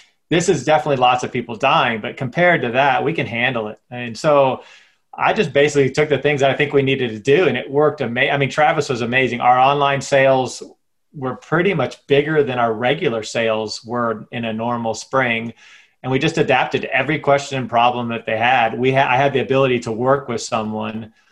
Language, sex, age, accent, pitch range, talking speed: English, male, 30-49, American, 115-145 Hz, 215 wpm